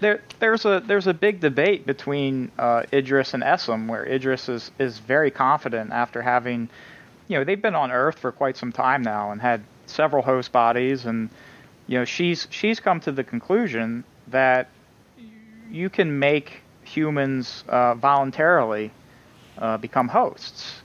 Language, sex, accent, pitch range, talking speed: English, male, American, 120-140 Hz, 160 wpm